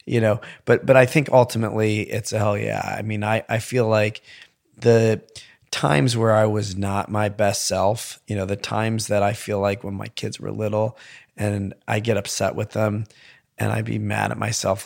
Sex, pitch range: male, 100-120 Hz